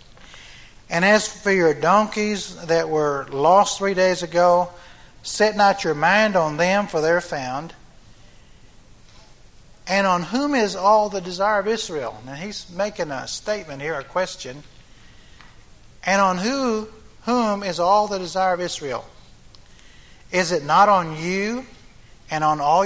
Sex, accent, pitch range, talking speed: male, American, 155-205 Hz, 145 wpm